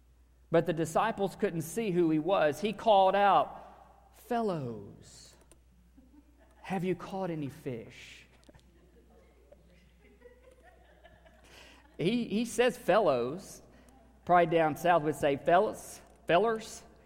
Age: 50-69